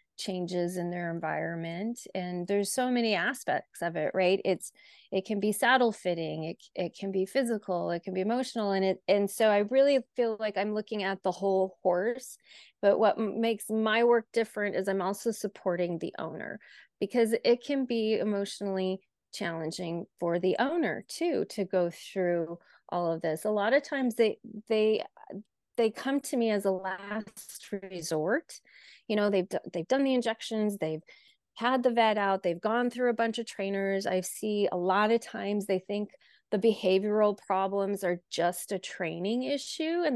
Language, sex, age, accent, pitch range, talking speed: English, female, 30-49, American, 185-225 Hz, 180 wpm